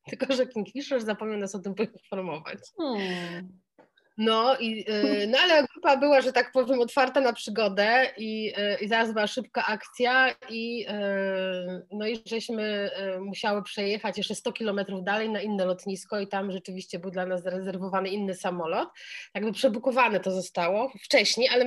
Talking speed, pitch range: 150 wpm, 185-225 Hz